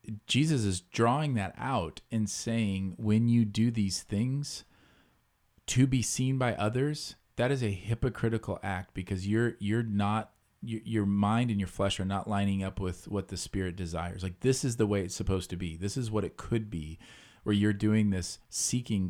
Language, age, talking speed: English, 40-59, 190 wpm